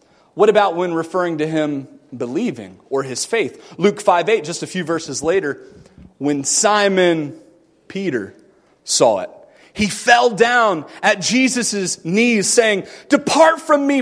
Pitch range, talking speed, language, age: 195-285 Hz, 135 wpm, English, 30-49